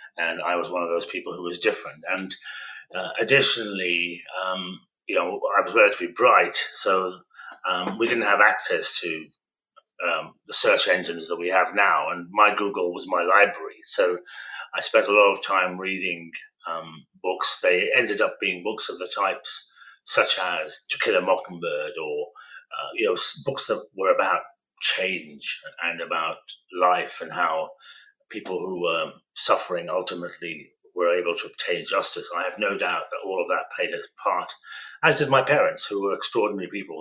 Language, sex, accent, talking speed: English, male, British, 175 wpm